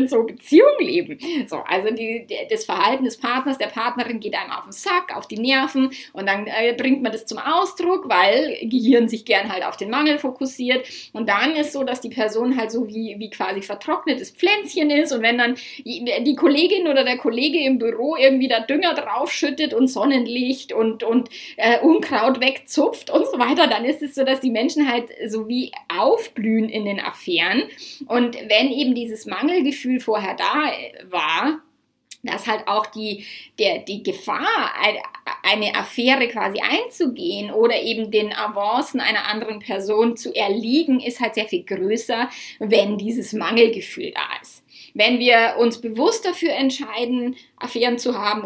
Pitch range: 220-285 Hz